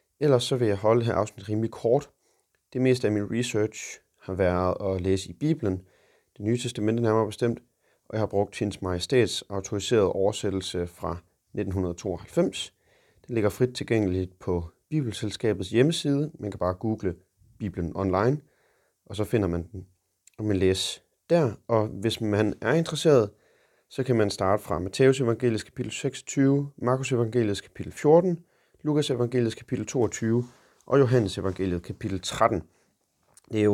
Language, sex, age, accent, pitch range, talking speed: Danish, male, 30-49, native, 95-125 Hz, 150 wpm